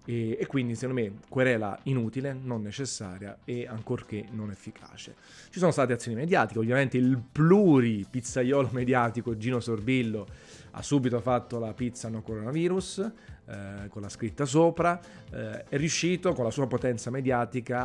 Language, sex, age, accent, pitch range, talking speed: Italian, male, 30-49, native, 110-130 Hz, 150 wpm